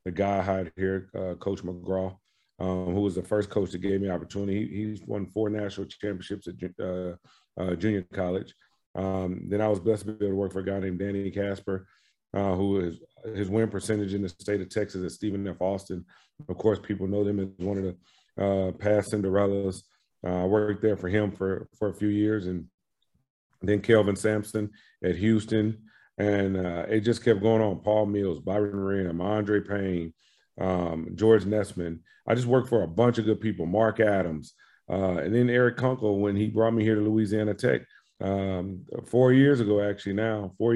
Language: English